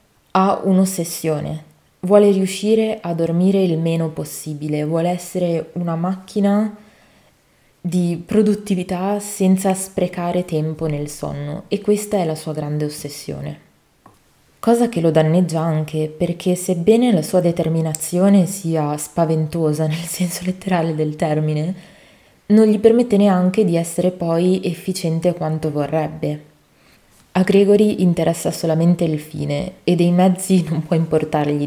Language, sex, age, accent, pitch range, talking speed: Italian, female, 20-39, native, 155-185 Hz, 125 wpm